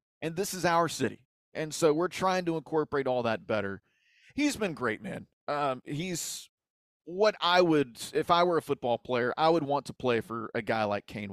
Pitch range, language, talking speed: 125-175 Hz, English, 205 wpm